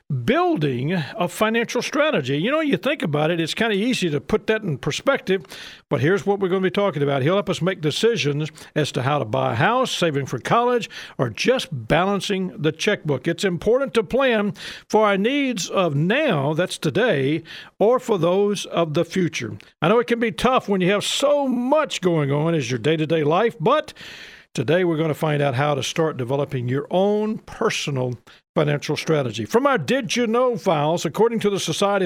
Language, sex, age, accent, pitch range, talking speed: English, male, 50-69, American, 150-210 Hz, 200 wpm